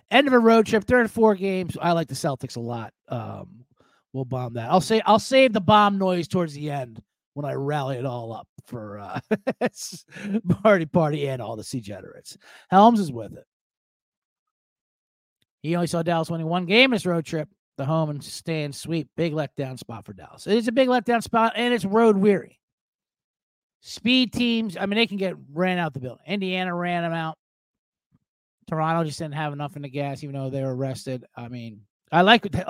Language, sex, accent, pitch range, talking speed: English, male, American, 135-195 Hz, 205 wpm